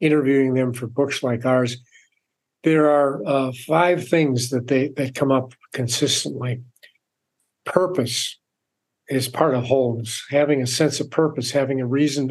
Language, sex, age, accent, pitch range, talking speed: English, male, 50-69, American, 130-155 Hz, 145 wpm